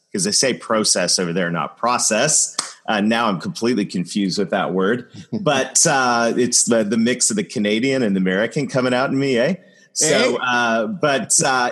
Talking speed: 185 wpm